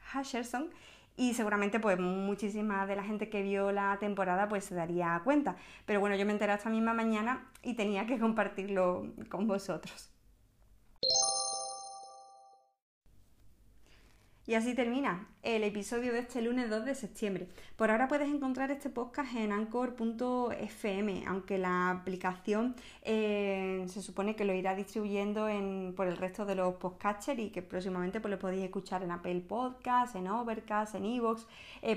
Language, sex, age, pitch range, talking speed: Spanish, female, 20-39, 190-230 Hz, 150 wpm